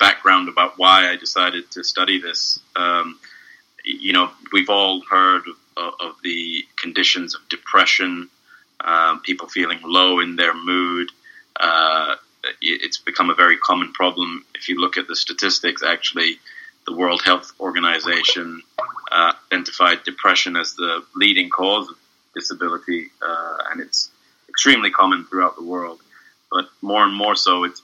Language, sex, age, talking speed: English, male, 30-49, 145 wpm